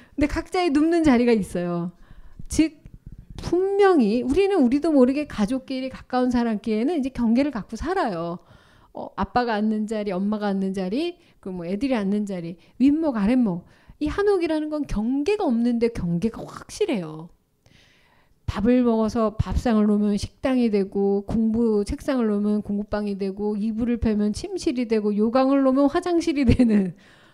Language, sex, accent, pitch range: Korean, female, native, 205-295 Hz